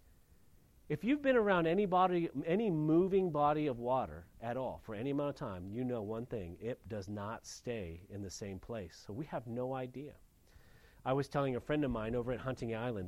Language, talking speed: English, 210 wpm